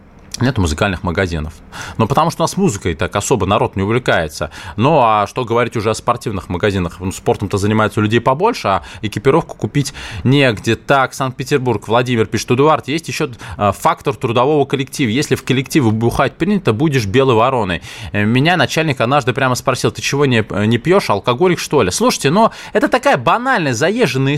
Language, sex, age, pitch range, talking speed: Russian, male, 20-39, 100-145 Hz, 170 wpm